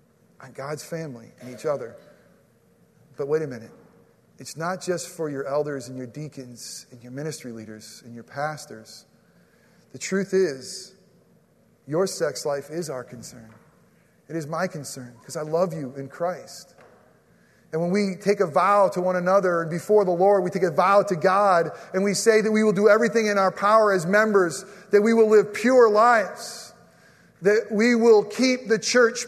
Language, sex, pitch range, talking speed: English, male, 180-235 Hz, 180 wpm